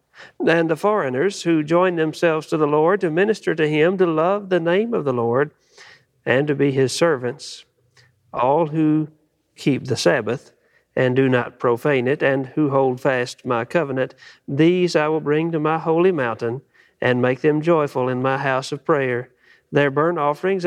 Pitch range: 130-165 Hz